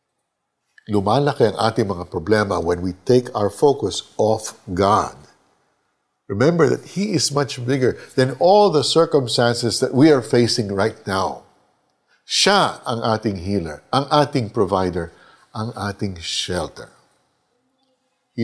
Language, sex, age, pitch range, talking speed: Filipino, male, 60-79, 100-135 Hz, 125 wpm